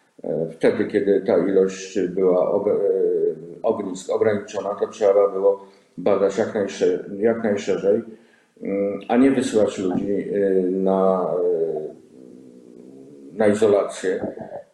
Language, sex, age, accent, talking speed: Polish, male, 50-69, native, 75 wpm